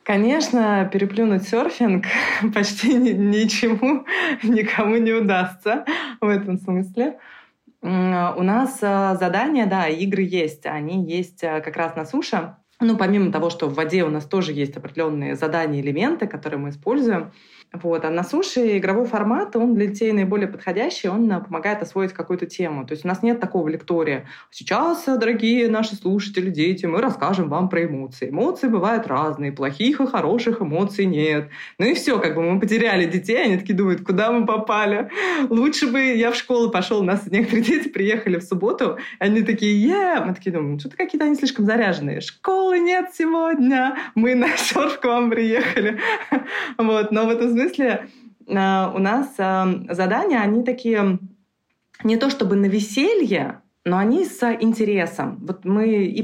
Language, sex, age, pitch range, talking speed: Russian, female, 20-39, 180-235 Hz, 160 wpm